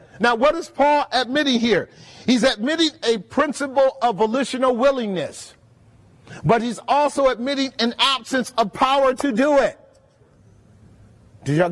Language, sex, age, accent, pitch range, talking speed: English, male, 40-59, American, 170-270 Hz, 135 wpm